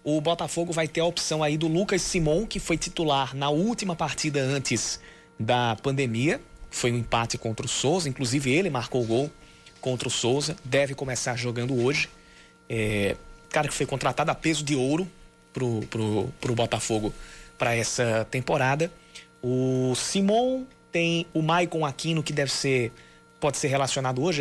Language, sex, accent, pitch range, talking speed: Portuguese, male, Brazilian, 125-160 Hz, 160 wpm